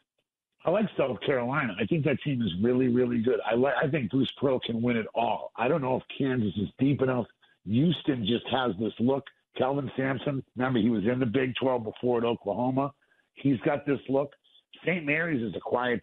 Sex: male